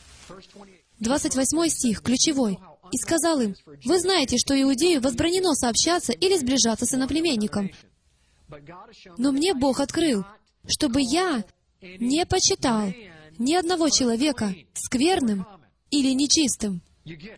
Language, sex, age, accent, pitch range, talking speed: Russian, female, 20-39, native, 220-320 Hz, 105 wpm